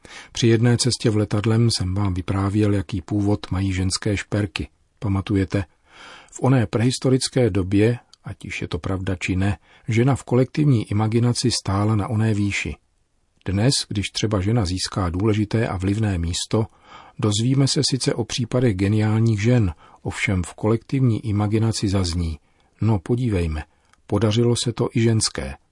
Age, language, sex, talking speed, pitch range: 40-59, Czech, male, 140 wpm, 95-115 Hz